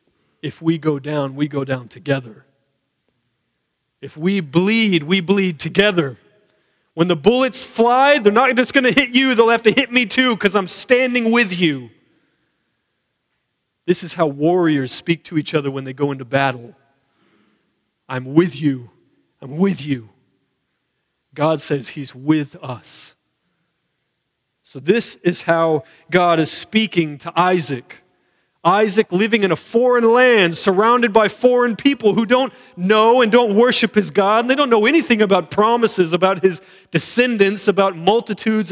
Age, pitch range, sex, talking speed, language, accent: 40-59, 145-215 Hz, male, 150 wpm, English, American